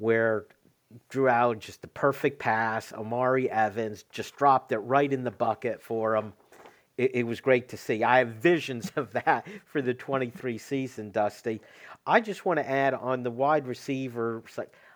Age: 50-69